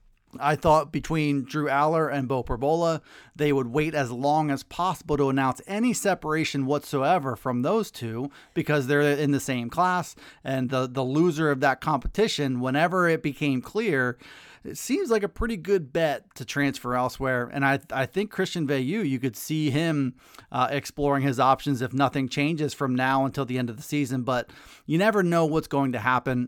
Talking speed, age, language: 190 wpm, 30-49, English